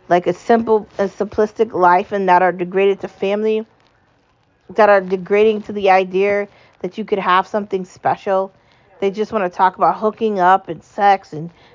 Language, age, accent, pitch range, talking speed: English, 40-59, American, 180-215 Hz, 180 wpm